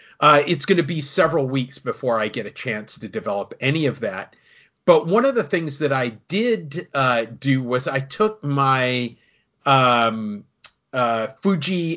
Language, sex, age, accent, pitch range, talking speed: English, male, 40-59, American, 125-160 Hz, 170 wpm